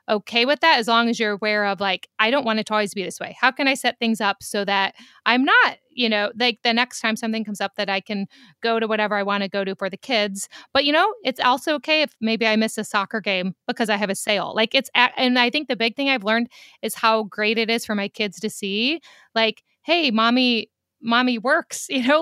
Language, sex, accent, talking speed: English, female, American, 265 wpm